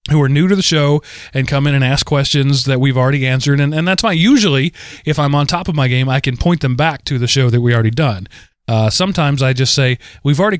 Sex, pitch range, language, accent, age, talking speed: male, 125-160 Hz, English, American, 30-49, 265 wpm